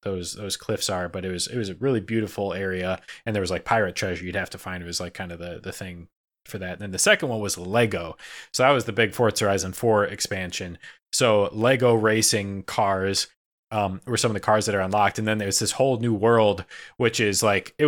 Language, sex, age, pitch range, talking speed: English, male, 20-39, 95-125 Hz, 245 wpm